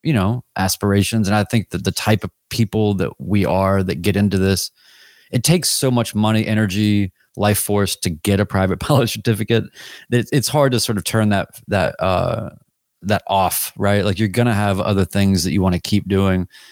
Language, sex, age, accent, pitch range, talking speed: English, male, 30-49, American, 100-115 Hz, 210 wpm